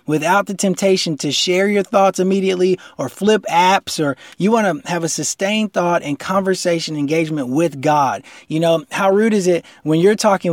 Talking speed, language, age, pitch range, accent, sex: 190 wpm, English, 20-39, 155-195 Hz, American, male